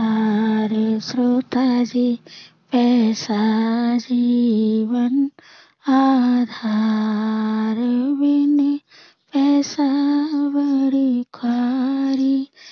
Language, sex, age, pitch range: Hindi, female, 20-39, 220-270 Hz